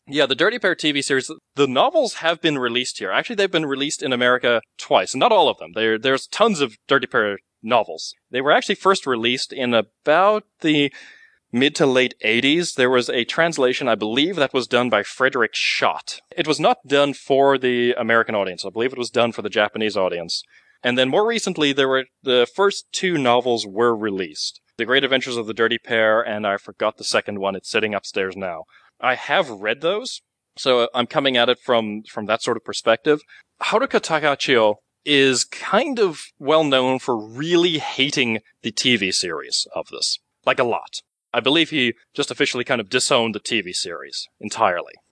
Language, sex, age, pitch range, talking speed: English, male, 20-39, 115-150 Hz, 190 wpm